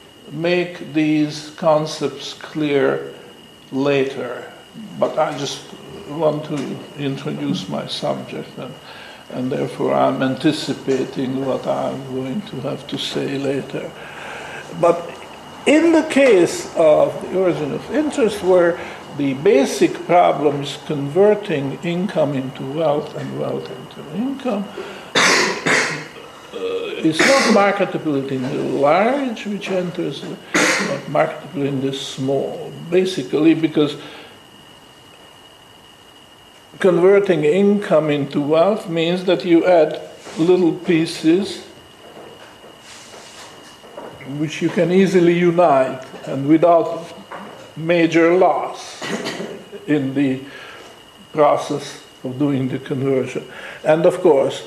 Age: 60-79